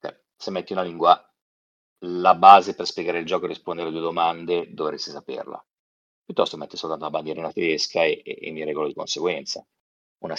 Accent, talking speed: native, 185 wpm